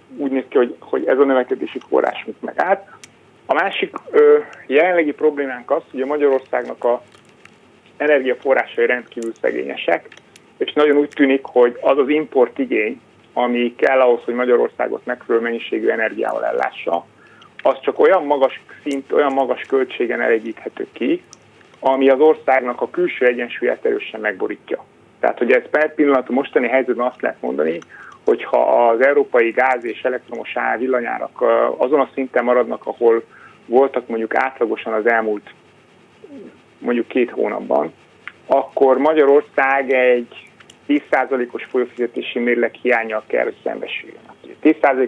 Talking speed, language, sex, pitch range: 135 wpm, Hungarian, male, 125-150 Hz